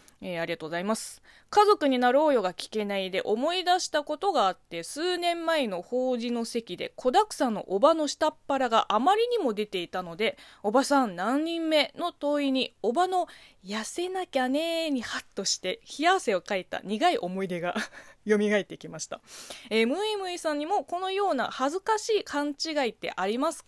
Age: 20-39